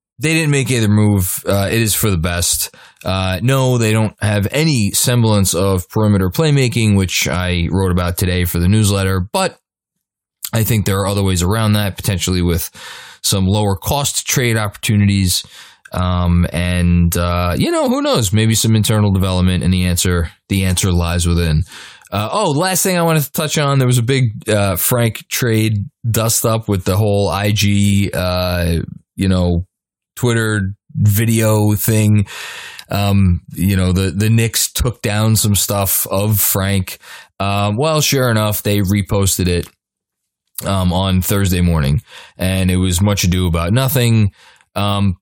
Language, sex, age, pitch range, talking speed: English, male, 20-39, 90-110 Hz, 160 wpm